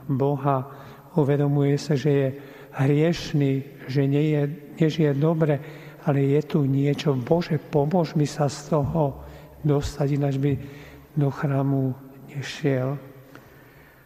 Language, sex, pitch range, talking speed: Slovak, male, 130-145 Hz, 105 wpm